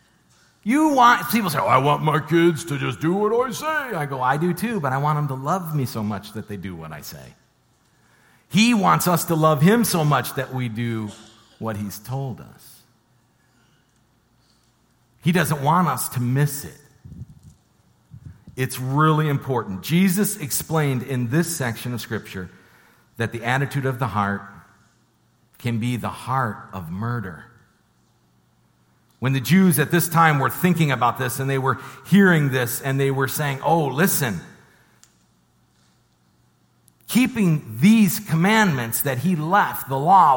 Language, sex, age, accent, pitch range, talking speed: English, male, 50-69, American, 120-175 Hz, 160 wpm